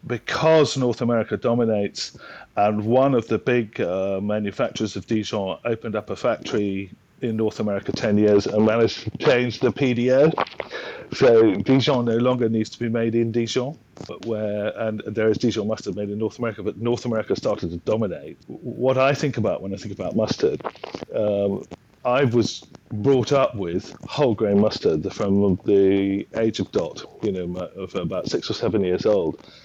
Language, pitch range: English, 105-125 Hz